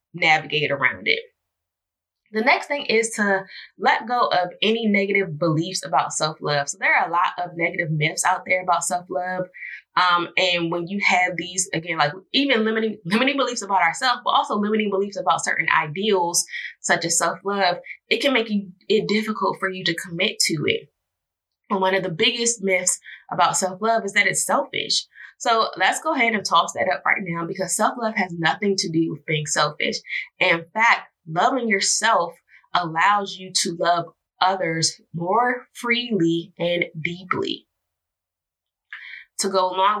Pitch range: 165-210 Hz